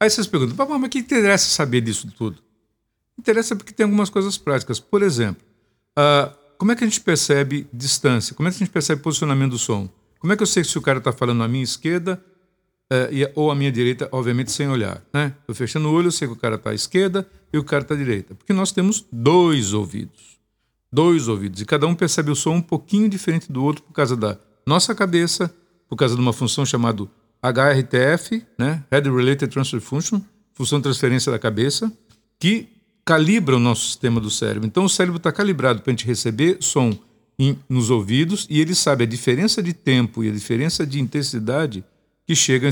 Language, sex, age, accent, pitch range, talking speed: Portuguese, male, 50-69, Brazilian, 120-170 Hz, 210 wpm